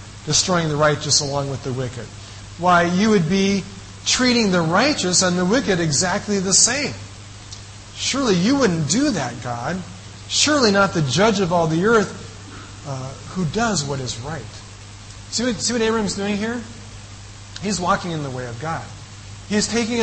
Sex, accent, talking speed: male, American, 165 wpm